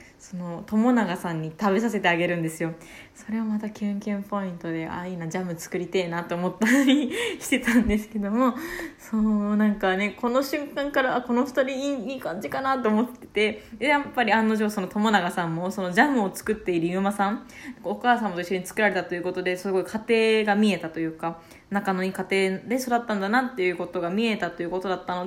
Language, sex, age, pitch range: Japanese, female, 20-39, 180-235 Hz